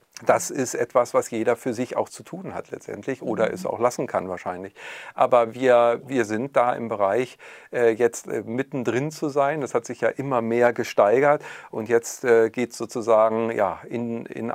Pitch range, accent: 110-130 Hz, German